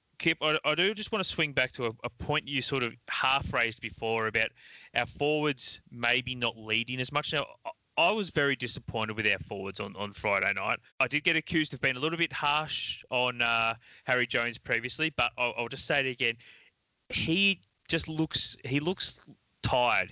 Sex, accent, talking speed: male, Australian, 195 wpm